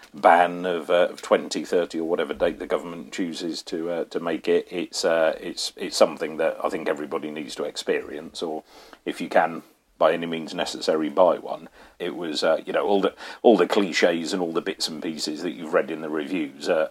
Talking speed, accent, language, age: 220 wpm, British, English, 40-59